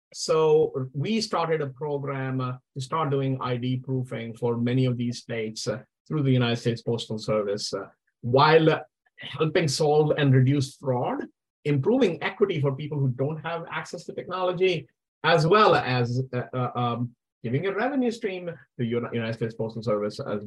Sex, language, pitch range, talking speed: male, English, 125-160 Hz, 170 wpm